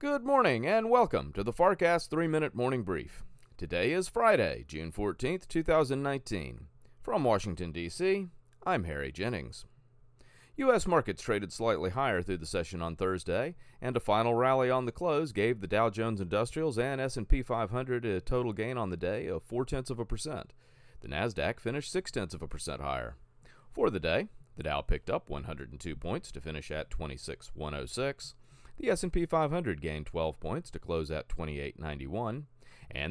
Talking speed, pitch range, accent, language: 180 wpm, 90-135 Hz, American, English